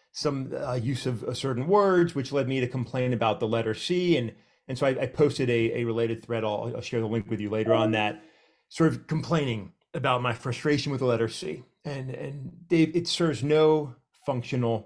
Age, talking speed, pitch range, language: 30-49, 220 wpm, 120-160 Hz, English